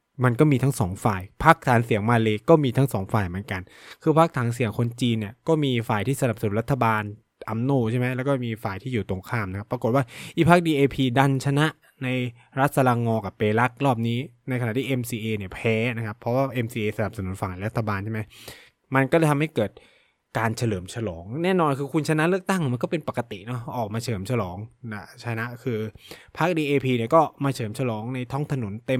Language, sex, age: Thai, male, 20-39